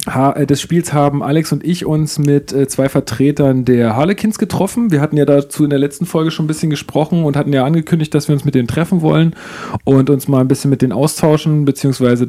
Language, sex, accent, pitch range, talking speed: German, male, German, 120-145 Hz, 235 wpm